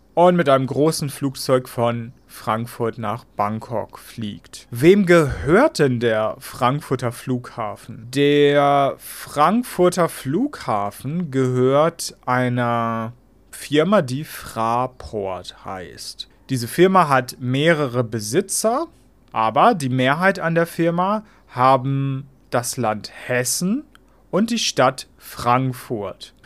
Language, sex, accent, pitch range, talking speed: German, male, German, 125-165 Hz, 100 wpm